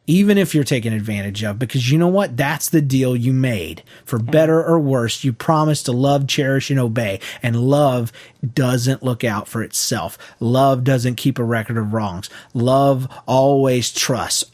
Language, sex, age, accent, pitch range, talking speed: English, male, 30-49, American, 115-145 Hz, 180 wpm